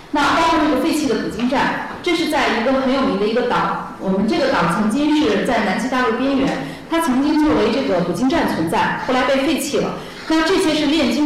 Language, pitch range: Chinese, 225-295 Hz